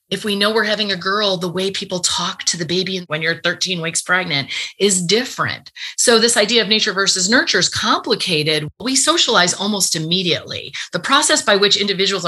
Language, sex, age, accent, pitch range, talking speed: English, female, 30-49, American, 165-205 Hz, 190 wpm